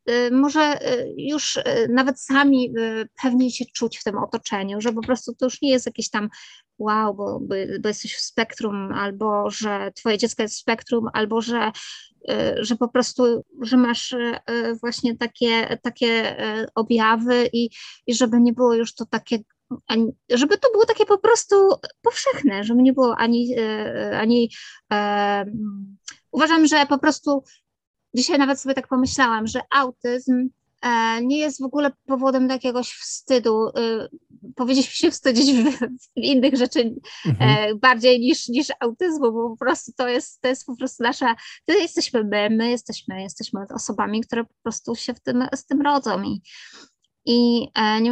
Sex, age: female, 20-39